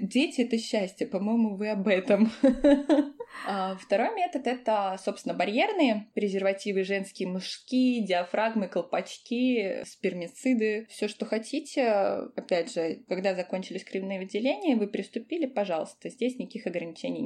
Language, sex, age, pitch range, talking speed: Russian, female, 20-39, 195-255 Hz, 115 wpm